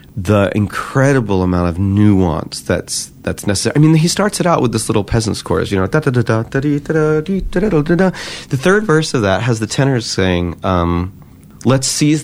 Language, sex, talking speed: English, male, 215 wpm